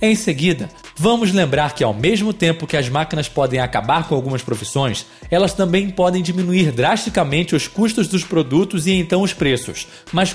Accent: Brazilian